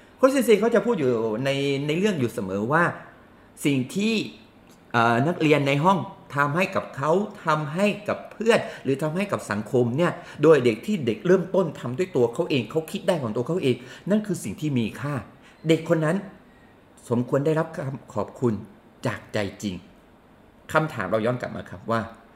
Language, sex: Thai, male